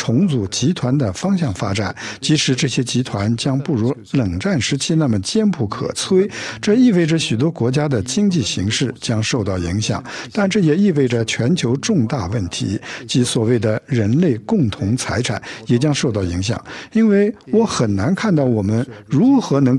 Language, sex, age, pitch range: Chinese, male, 60-79, 115-165 Hz